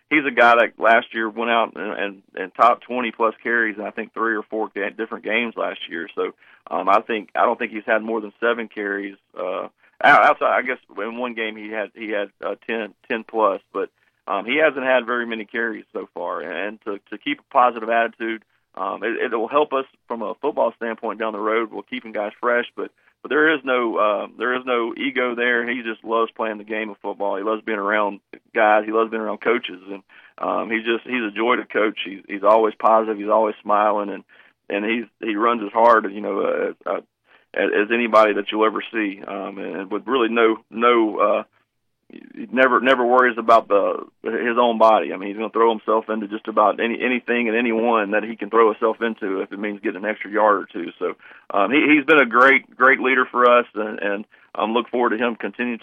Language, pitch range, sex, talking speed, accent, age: English, 105-120 Hz, male, 230 wpm, American, 40-59